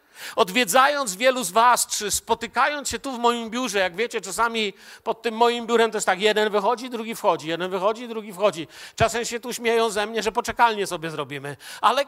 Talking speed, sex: 200 wpm, male